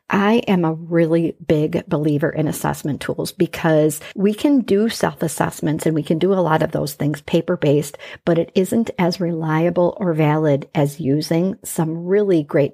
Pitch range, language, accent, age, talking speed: 155-195 Hz, English, American, 50-69, 170 wpm